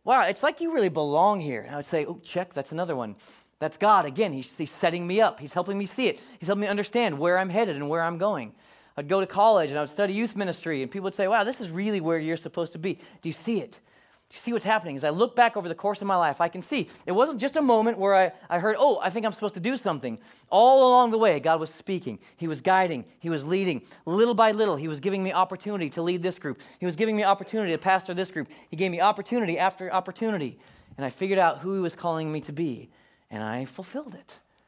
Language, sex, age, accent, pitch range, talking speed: English, male, 30-49, American, 145-200 Hz, 270 wpm